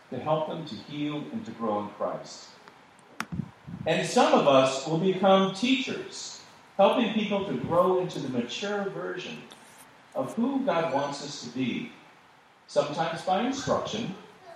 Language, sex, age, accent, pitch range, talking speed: English, male, 40-59, American, 140-205 Hz, 145 wpm